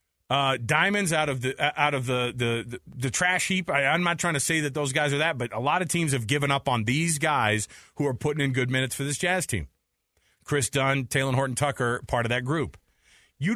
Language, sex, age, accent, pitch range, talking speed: English, male, 30-49, American, 130-180 Hz, 245 wpm